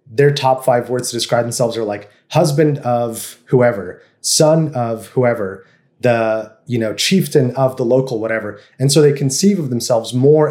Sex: male